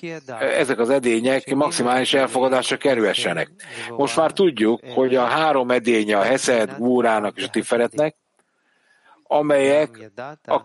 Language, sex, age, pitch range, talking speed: English, male, 60-79, 120-145 Hz, 115 wpm